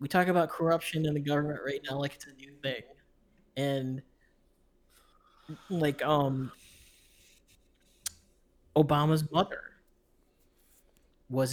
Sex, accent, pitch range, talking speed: male, American, 130-155 Hz, 105 wpm